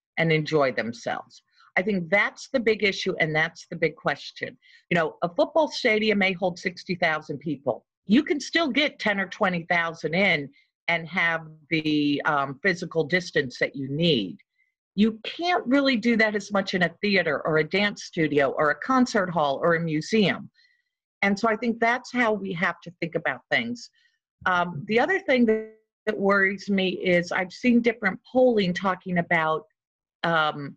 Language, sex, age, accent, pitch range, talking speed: English, female, 50-69, American, 160-220 Hz, 170 wpm